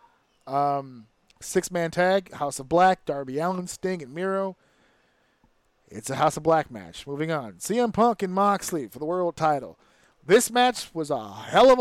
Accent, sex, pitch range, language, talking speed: American, male, 135-185 Hz, English, 175 wpm